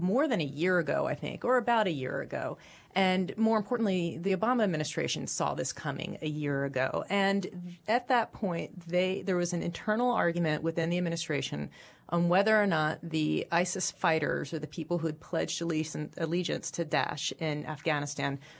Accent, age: American, 30-49